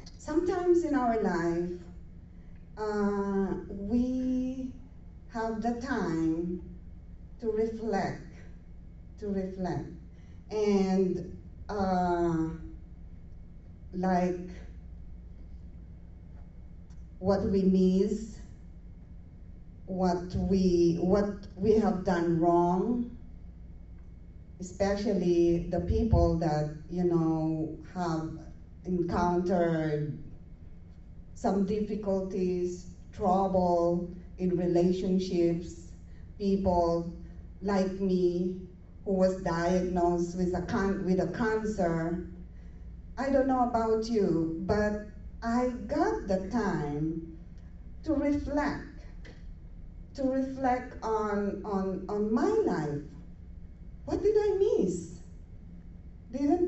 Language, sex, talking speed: English, female, 80 wpm